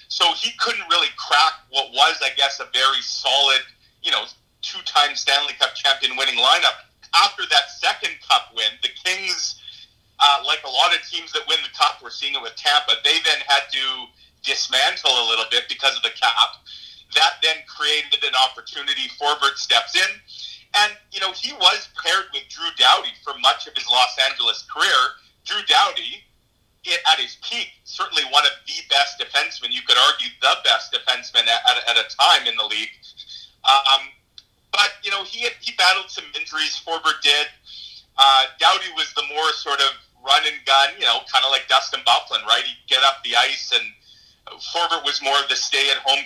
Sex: male